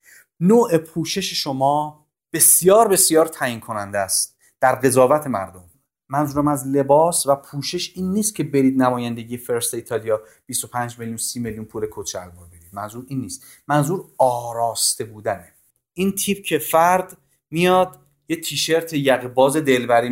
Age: 30-49